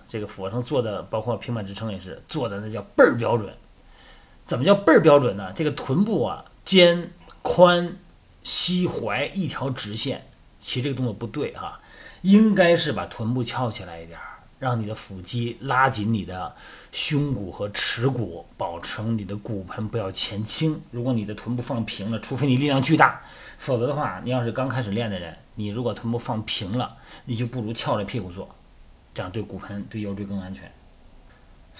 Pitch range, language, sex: 105-145 Hz, Chinese, male